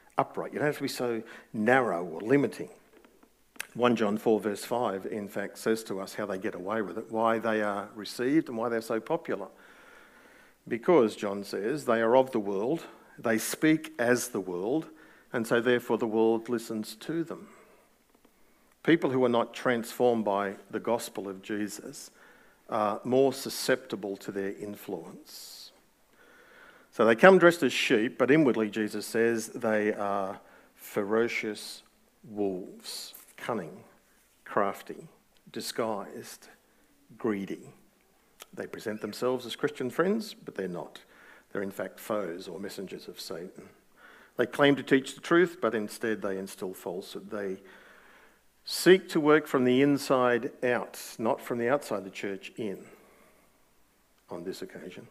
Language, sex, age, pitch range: English, male, 50-69, 105-130 Hz